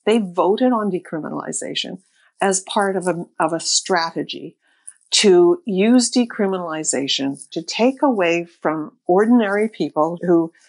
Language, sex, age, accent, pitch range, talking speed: English, female, 50-69, American, 165-215 Hz, 120 wpm